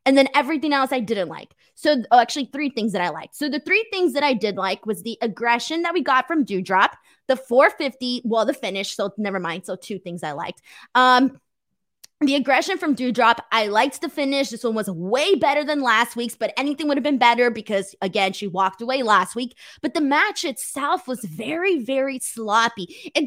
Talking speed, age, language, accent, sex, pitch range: 215 wpm, 20-39, English, American, female, 215-295 Hz